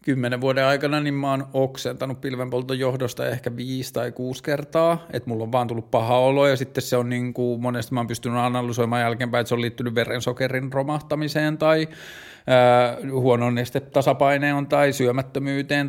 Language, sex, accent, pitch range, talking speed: Finnish, male, native, 120-135 Hz, 160 wpm